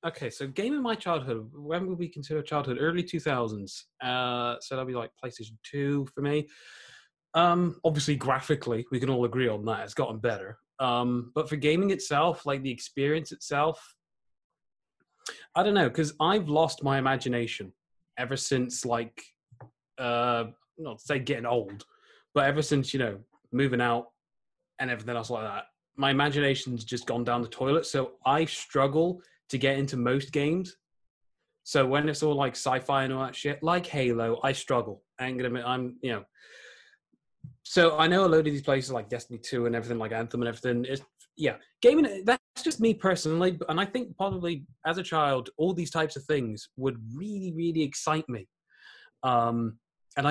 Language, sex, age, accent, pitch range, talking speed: English, male, 20-39, British, 125-160 Hz, 180 wpm